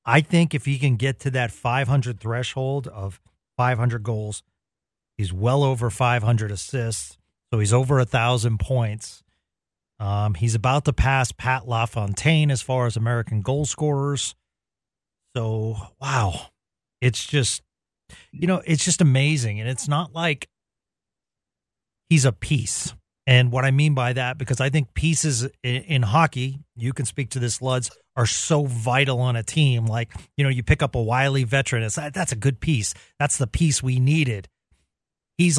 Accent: American